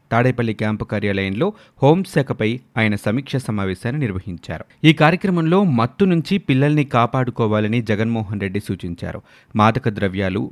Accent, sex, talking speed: native, male, 110 wpm